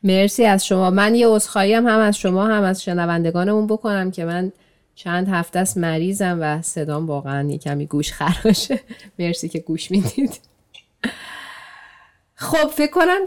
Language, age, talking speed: Persian, 30-49, 150 wpm